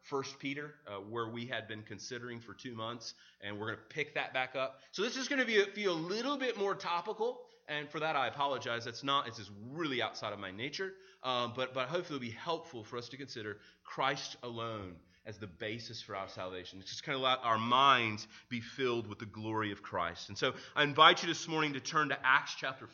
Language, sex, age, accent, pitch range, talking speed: English, male, 30-49, American, 110-150 Hz, 235 wpm